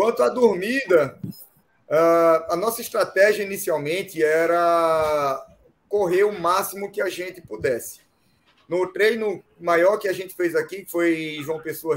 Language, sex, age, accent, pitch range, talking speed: Portuguese, male, 20-39, Brazilian, 160-205 Hz, 140 wpm